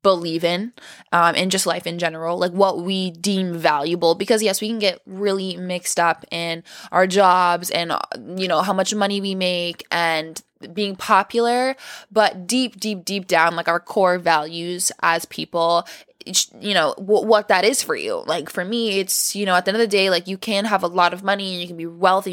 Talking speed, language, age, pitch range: 215 wpm, English, 10-29, 180-200 Hz